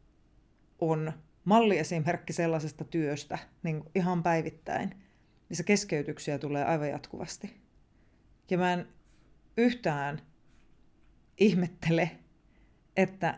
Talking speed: 80 wpm